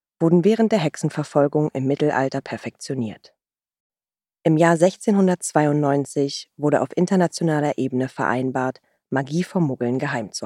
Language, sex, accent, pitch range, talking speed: German, female, German, 130-170 Hz, 115 wpm